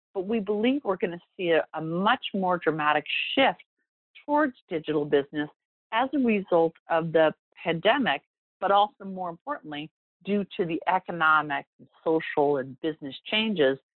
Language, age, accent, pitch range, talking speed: English, 50-69, American, 155-210 Hz, 145 wpm